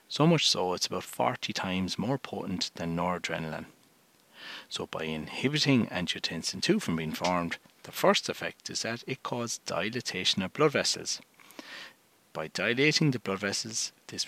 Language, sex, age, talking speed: English, male, 60-79, 150 wpm